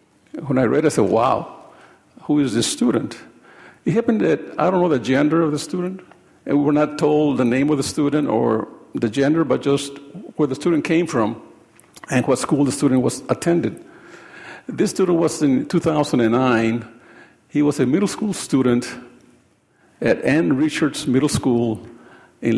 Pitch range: 120-150 Hz